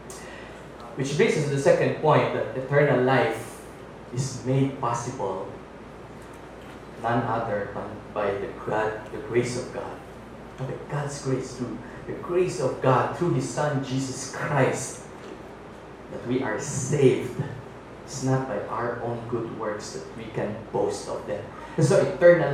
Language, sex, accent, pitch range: English, male, Filipino, 120-145 Hz